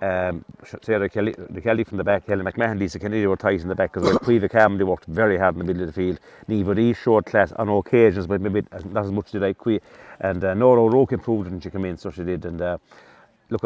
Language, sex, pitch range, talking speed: English, male, 95-115 Hz, 250 wpm